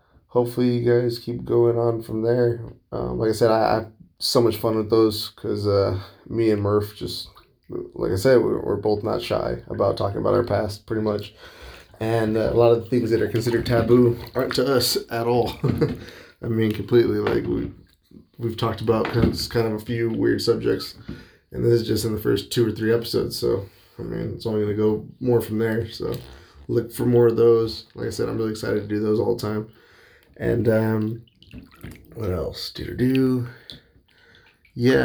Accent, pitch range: American, 105-115 Hz